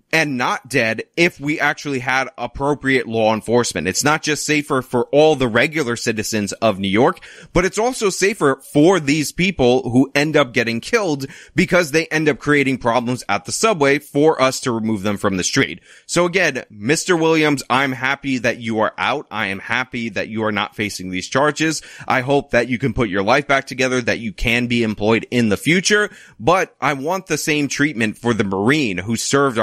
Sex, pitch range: male, 110-150 Hz